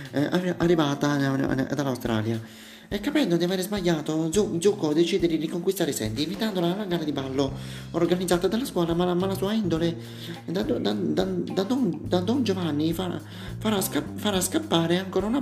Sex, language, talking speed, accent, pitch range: male, Italian, 155 wpm, native, 155-190 Hz